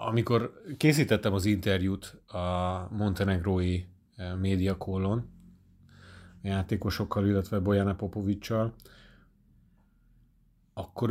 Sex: male